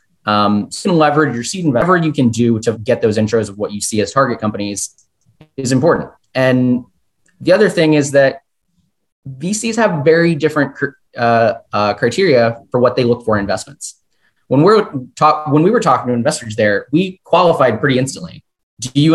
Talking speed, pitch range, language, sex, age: 185 wpm, 110-140 Hz, English, male, 20-39